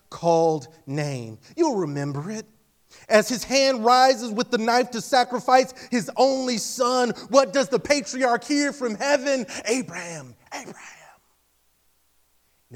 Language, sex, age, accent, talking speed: English, male, 30-49, American, 125 wpm